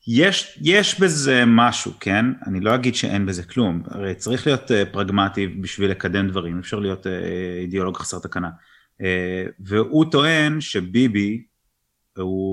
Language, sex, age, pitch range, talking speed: Hebrew, male, 30-49, 95-120 Hz, 150 wpm